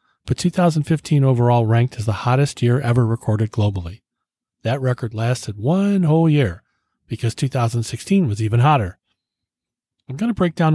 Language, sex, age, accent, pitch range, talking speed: English, male, 40-59, American, 110-140 Hz, 150 wpm